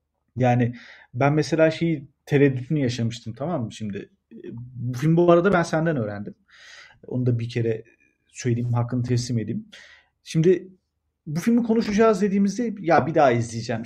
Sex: male